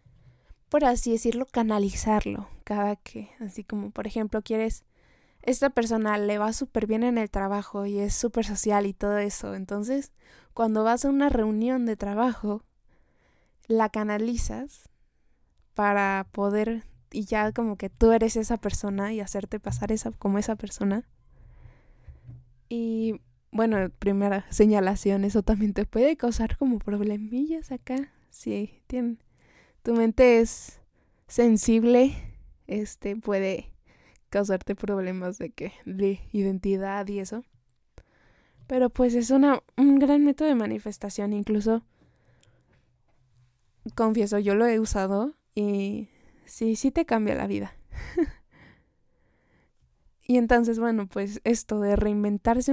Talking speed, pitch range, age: 125 wpm, 200-235 Hz, 20-39